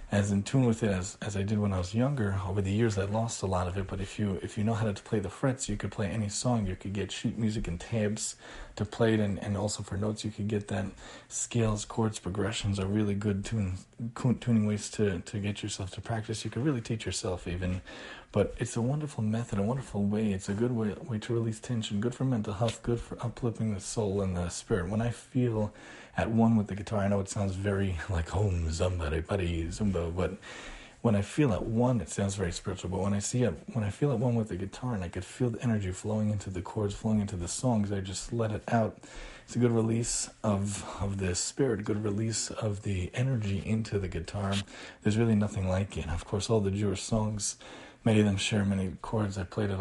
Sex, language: male, English